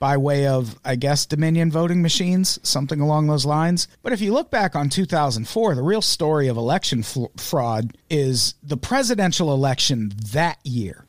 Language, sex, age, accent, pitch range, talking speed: English, male, 40-59, American, 135-190 Hz, 170 wpm